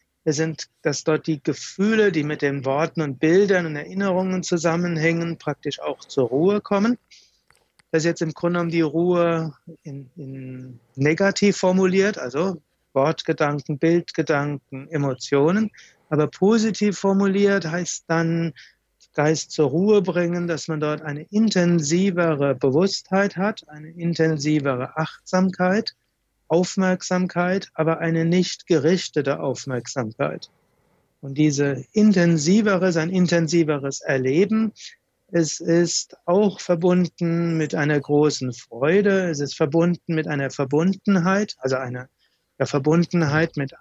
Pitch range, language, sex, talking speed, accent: 150-185 Hz, German, male, 120 wpm, German